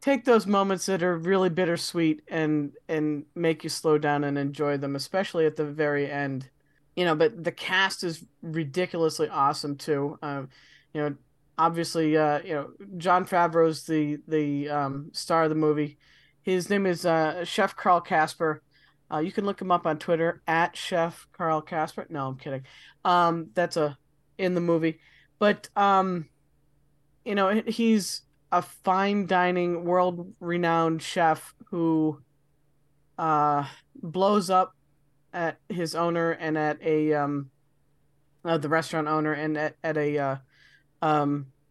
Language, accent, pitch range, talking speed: English, American, 145-175 Hz, 150 wpm